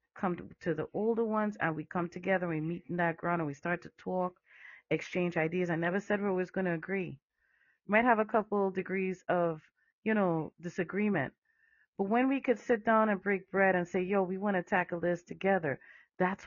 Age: 40-59